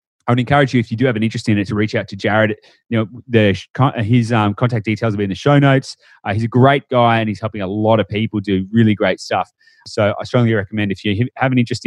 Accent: Australian